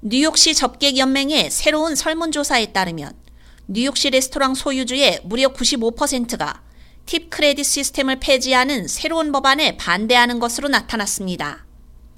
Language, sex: Korean, female